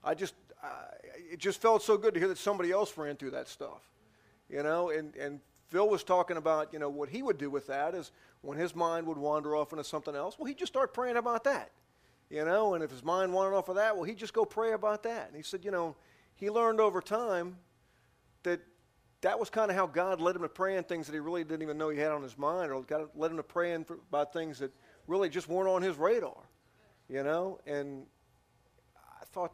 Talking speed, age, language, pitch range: 240 wpm, 40-59, English, 150-190 Hz